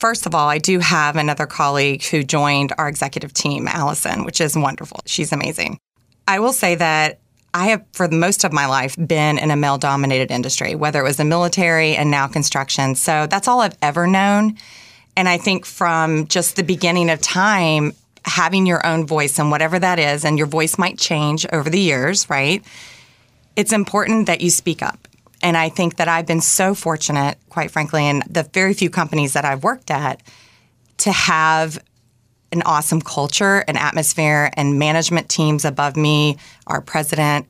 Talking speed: 180 wpm